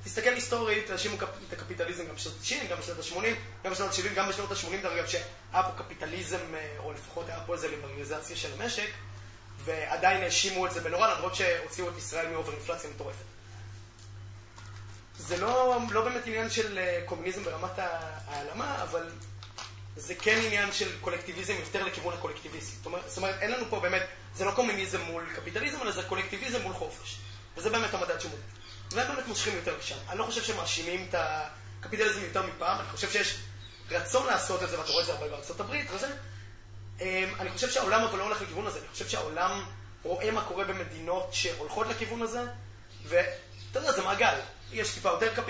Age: 20-39